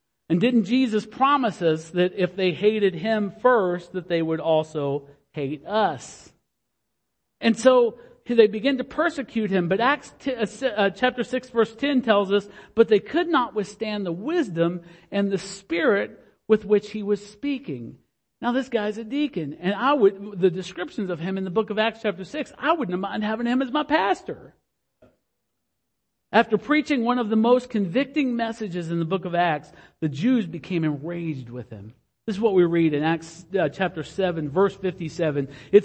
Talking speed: 175 wpm